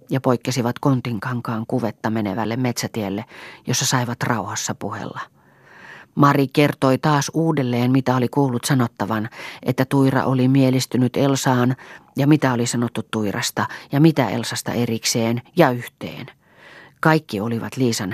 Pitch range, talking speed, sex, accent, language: 120-140 Hz, 120 wpm, female, native, Finnish